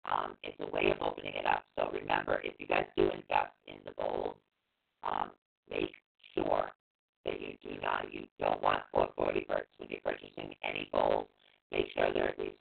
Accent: American